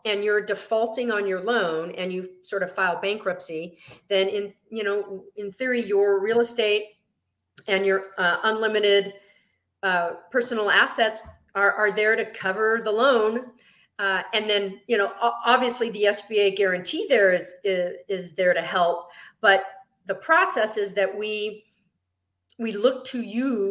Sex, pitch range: female, 180-225 Hz